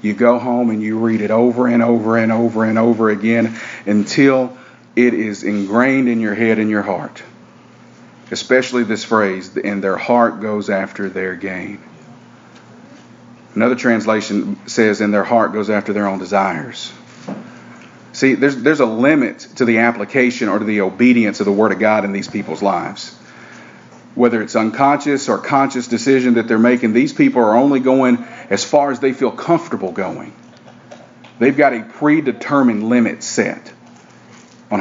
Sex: male